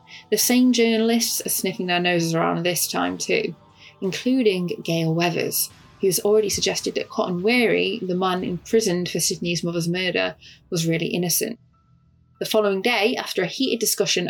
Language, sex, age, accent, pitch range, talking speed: English, female, 20-39, British, 180-225 Hz, 160 wpm